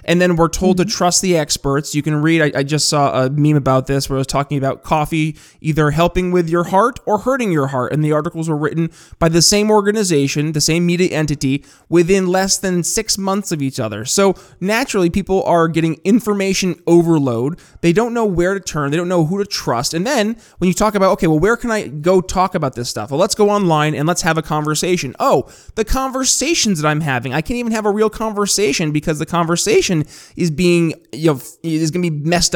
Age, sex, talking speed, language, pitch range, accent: 20-39, male, 230 wpm, English, 150-185 Hz, American